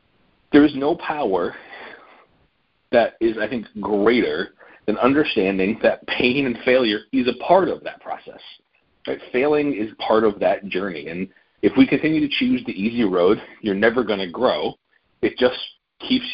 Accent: American